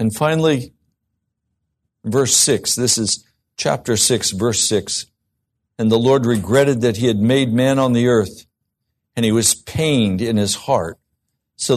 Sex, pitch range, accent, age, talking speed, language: male, 105-130 Hz, American, 60-79, 155 wpm, English